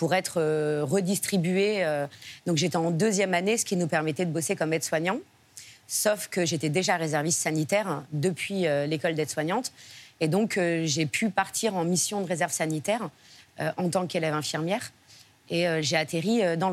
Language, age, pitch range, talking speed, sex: French, 30-49, 155-190 Hz, 160 wpm, female